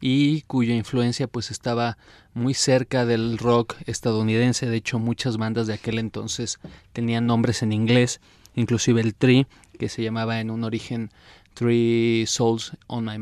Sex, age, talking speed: male, 30-49, 155 wpm